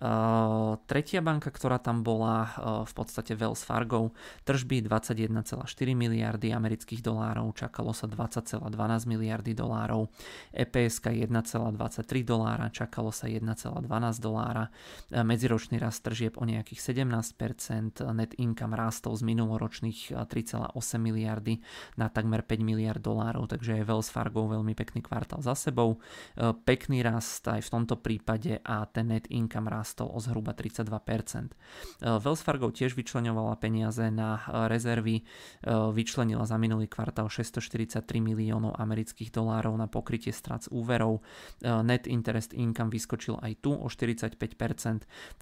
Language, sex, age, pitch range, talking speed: Czech, male, 20-39, 110-120 Hz, 125 wpm